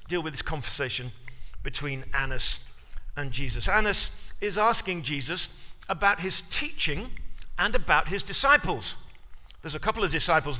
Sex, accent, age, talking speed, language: male, British, 50-69, 135 wpm, English